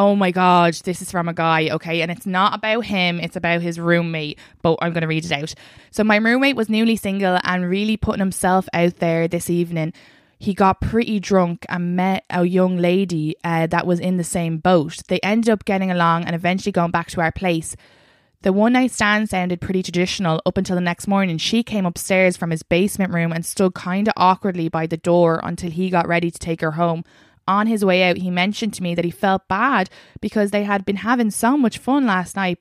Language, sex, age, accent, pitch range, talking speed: English, female, 20-39, Irish, 175-215 Hz, 230 wpm